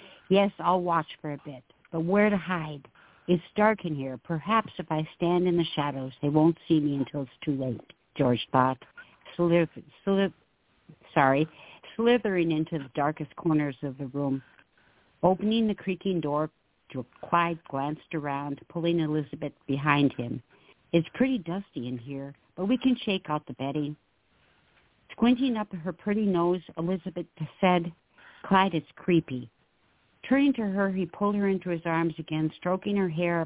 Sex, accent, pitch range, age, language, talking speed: female, American, 145-180 Hz, 60-79, English, 150 wpm